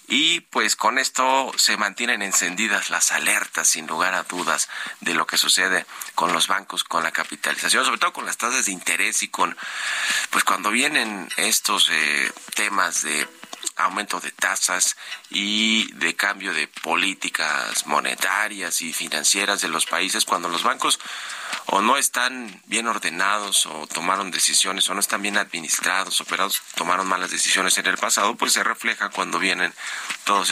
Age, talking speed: 40-59, 160 wpm